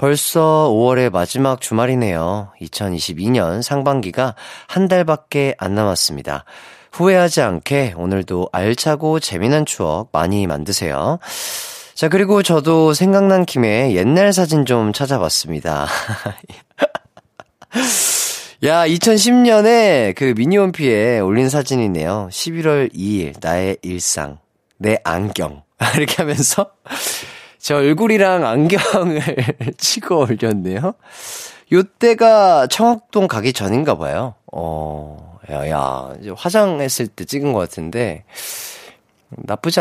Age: 30-49